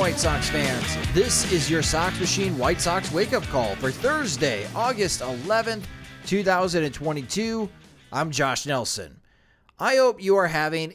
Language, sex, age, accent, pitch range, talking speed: English, male, 30-49, American, 130-205 Hz, 140 wpm